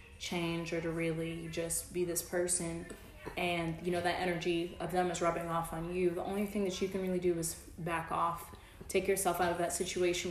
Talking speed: 215 wpm